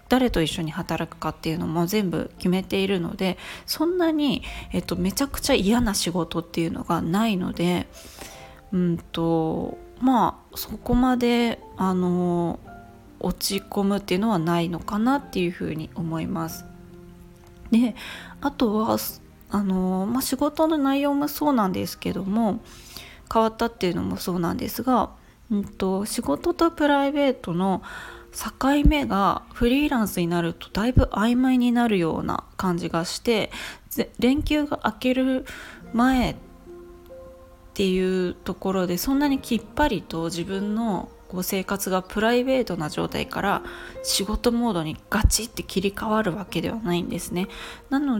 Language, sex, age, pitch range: Japanese, female, 20-39, 175-245 Hz